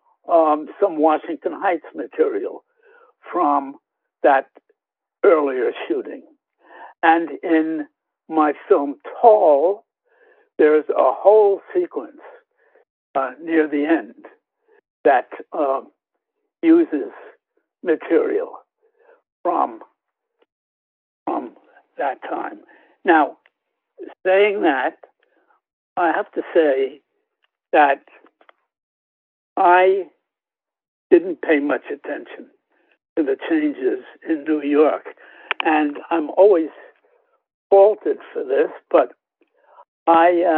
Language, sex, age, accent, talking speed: English, male, 60-79, American, 85 wpm